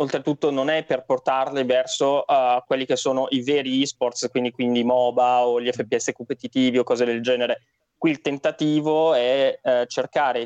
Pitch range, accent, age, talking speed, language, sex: 130-160 Hz, native, 20-39, 170 wpm, Italian, male